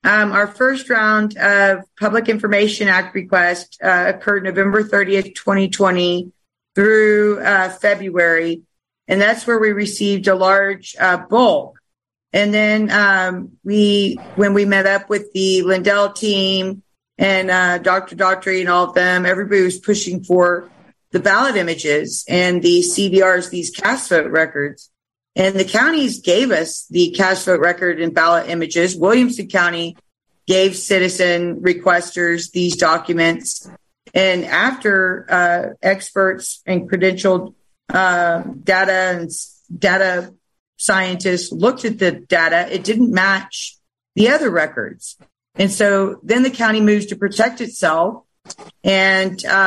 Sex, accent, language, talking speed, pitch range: female, American, English, 135 wpm, 180-205 Hz